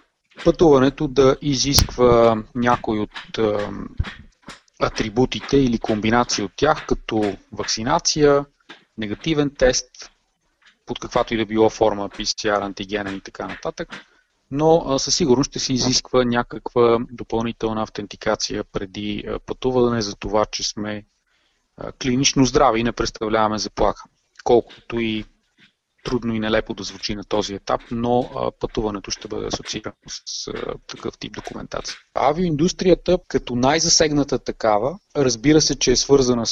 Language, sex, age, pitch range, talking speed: Bulgarian, male, 30-49, 110-130 Hz, 130 wpm